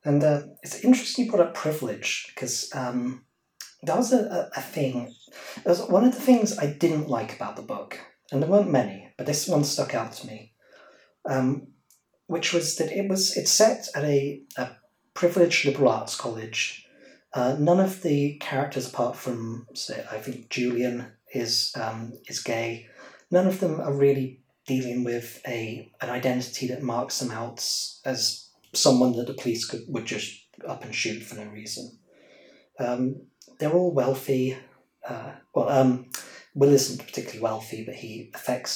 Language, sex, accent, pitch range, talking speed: English, male, British, 125-170 Hz, 170 wpm